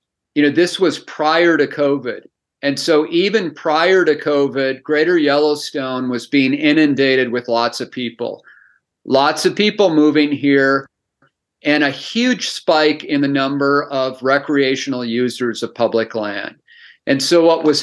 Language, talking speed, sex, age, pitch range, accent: English, 150 wpm, male, 40-59, 130-155 Hz, American